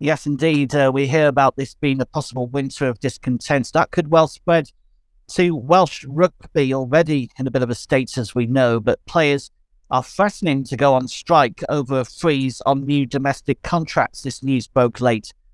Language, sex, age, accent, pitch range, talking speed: English, male, 50-69, British, 115-145 Hz, 190 wpm